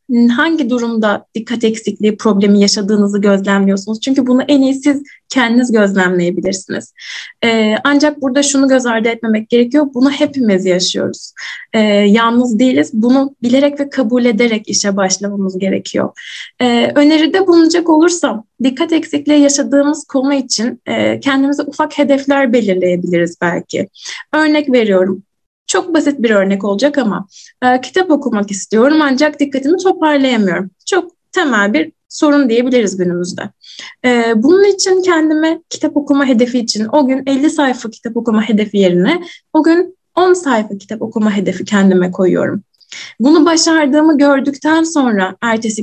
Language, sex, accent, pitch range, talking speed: Turkish, female, native, 215-295 Hz, 130 wpm